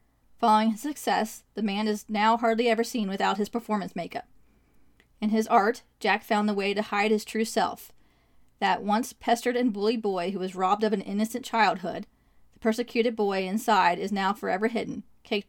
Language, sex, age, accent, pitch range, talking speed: English, female, 30-49, American, 200-225 Hz, 185 wpm